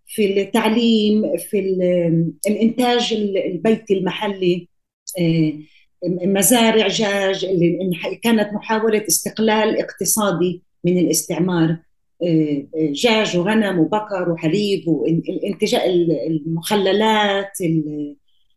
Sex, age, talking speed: female, 40-59, 65 wpm